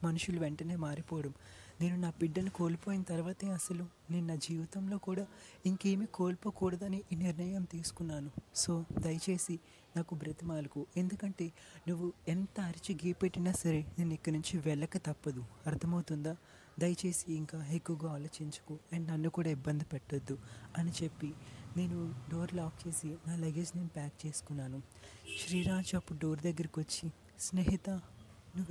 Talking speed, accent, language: 125 wpm, native, Telugu